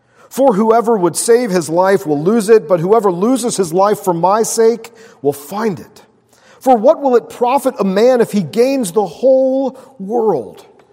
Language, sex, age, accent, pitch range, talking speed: English, male, 40-59, American, 140-210 Hz, 180 wpm